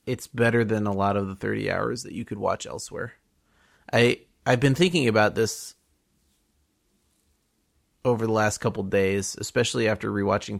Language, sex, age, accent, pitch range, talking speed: English, male, 30-49, American, 105-125 Hz, 165 wpm